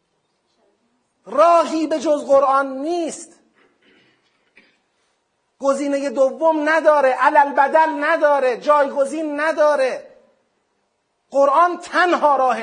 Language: Persian